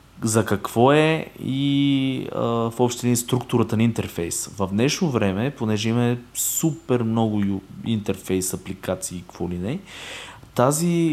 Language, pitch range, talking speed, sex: Bulgarian, 105-135 Hz, 135 wpm, male